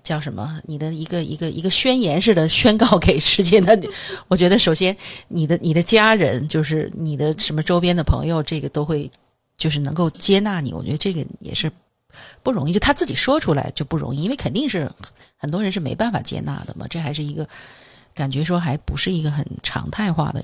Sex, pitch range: female, 145-205 Hz